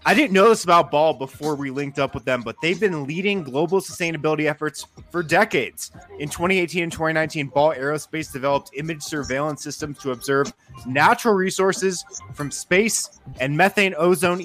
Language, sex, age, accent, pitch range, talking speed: English, male, 20-39, American, 145-185 Hz, 165 wpm